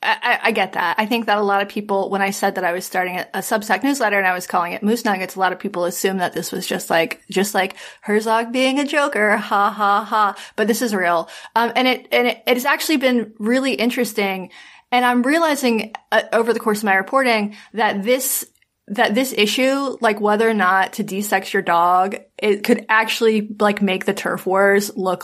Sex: female